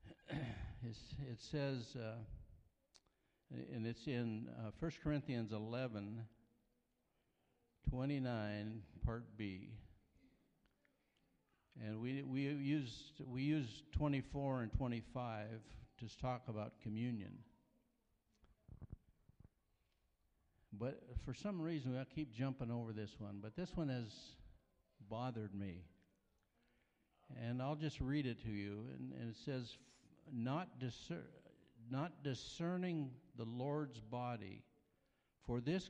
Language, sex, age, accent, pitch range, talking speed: English, male, 60-79, American, 105-135 Hz, 105 wpm